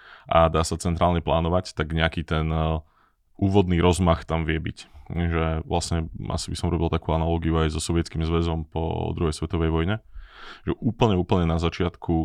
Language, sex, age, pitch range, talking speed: Slovak, male, 20-39, 80-90 Hz, 165 wpm